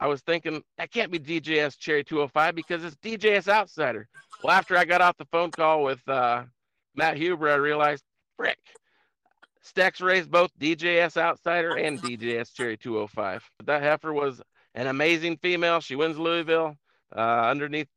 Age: 50-69